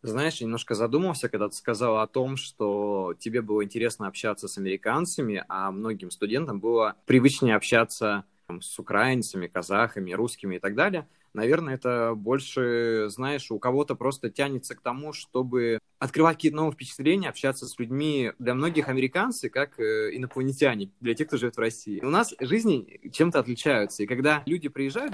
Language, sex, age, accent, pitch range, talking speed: Russian, male, 20-39, native, 110-140 Hz, 160 wpm